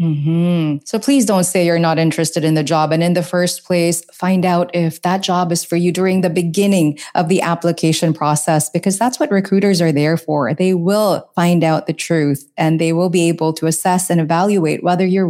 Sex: female